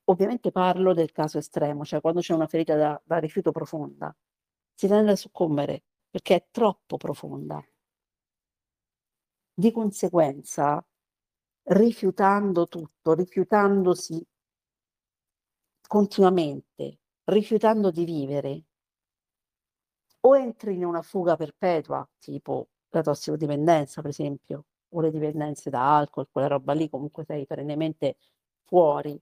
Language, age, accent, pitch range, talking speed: Italian, 50-69, native, 150-190 Hz, 110 wpm